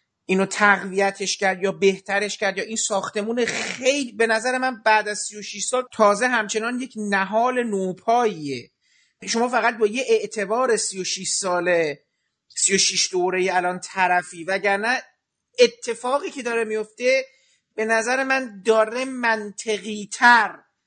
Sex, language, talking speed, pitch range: male, Persian, 125 wpm, 200-245 Hz